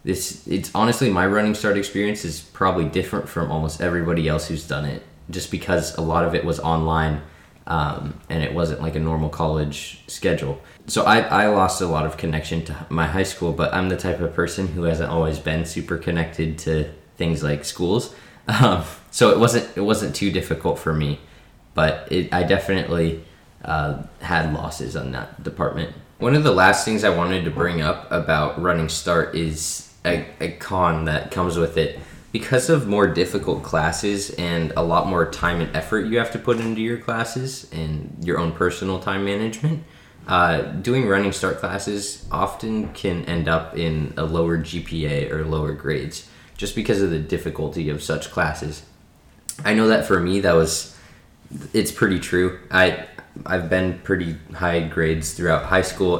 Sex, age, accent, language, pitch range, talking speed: male, 20-39, American, English, 80-95 Hz, 185 wpm